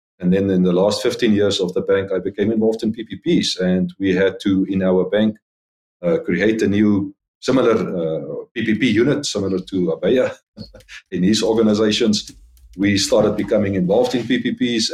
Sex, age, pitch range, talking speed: male, 50-69, 90-115 Hz, 170 wpm